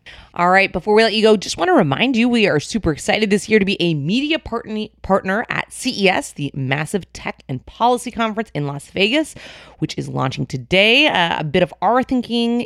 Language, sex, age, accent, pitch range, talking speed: English, female, 30-49, American, 150-220 Hz, 210 wpm